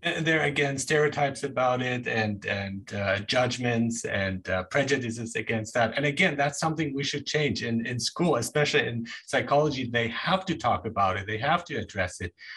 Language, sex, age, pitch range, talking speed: English, male, 30-49, 115-155 Hz, 180 wpm